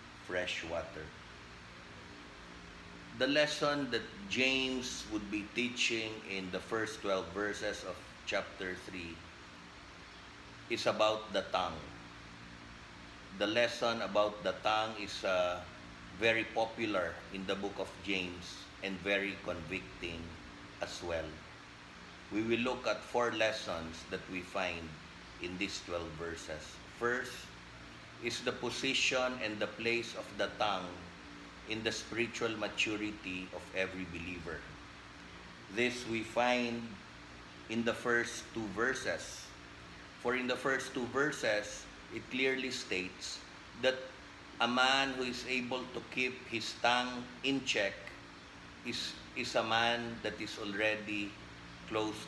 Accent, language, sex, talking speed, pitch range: Filipino, English, male, 125 wpm, 85-120 Hz